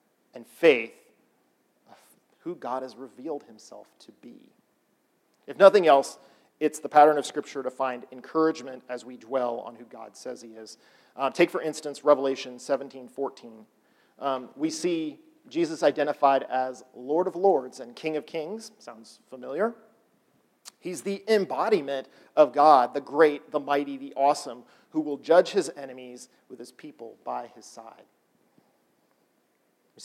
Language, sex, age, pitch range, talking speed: English, male, 40-59, 130-175 Hz, 150 wpm